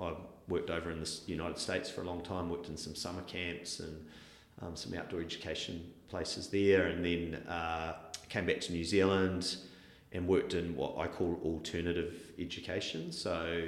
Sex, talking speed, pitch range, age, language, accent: male, 175 wpm, 80-90 Hz, 30-49, English, Australian